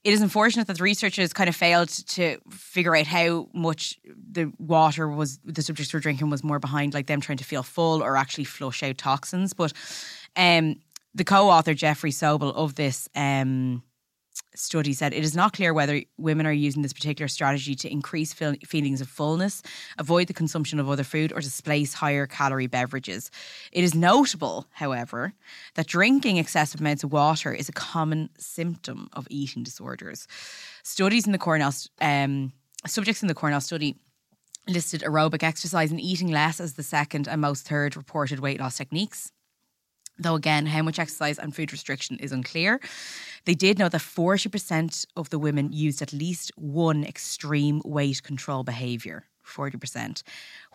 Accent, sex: Irish, female